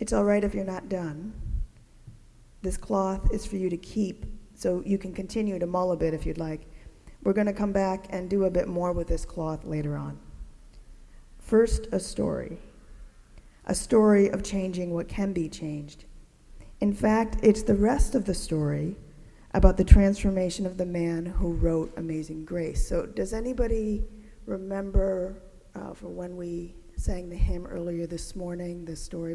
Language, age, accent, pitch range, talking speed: English, 40-59, American, 165-200 Hz, 175 wpm